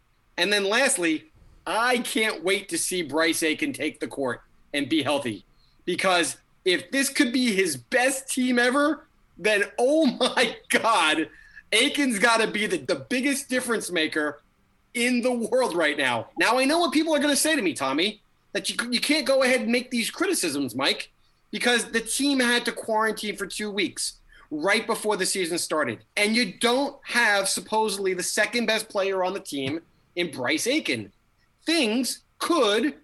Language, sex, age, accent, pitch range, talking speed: English, male, 30-49, American, 195-270 Hz, 175 wpm